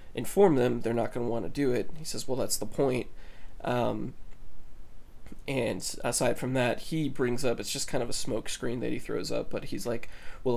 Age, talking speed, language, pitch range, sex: 20-39, 215 wpm, English, 120-135 Hz, male